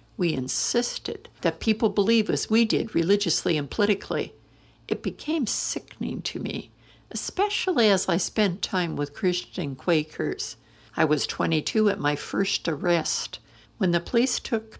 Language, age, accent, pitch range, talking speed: English, 60-79, American, 165-220 Hz, 140 wpm